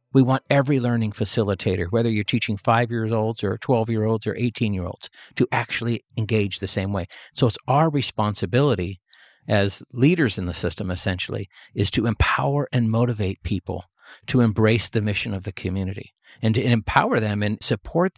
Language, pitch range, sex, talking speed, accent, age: English, 105-130 Hz, male, 160 wpm, American, 50-69